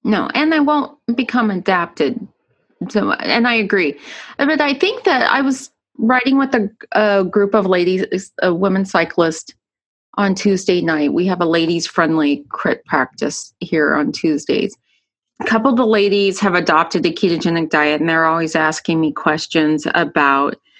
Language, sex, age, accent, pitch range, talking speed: English, female, 30-49, American, 165-215 Hz, 155 wpm